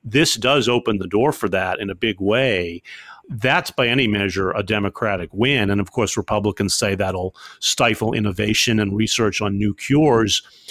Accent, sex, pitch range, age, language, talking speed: American, male, 105-135 Hz, 40-59, English, 175 wpm